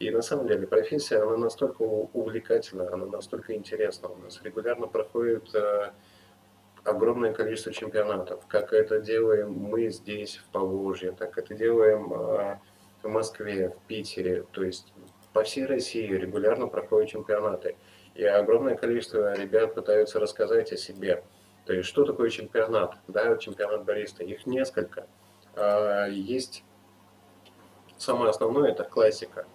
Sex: male